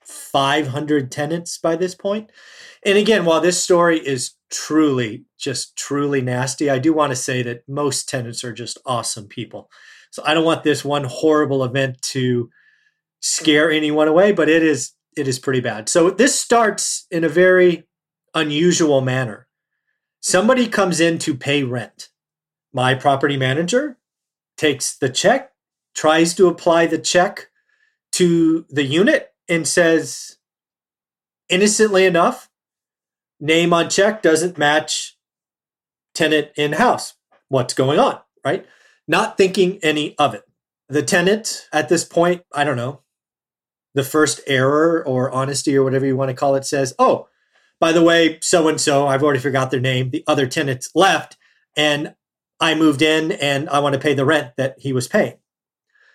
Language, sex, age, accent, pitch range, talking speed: English, male, 30-49, American, 140-180 Hz, 155 wpm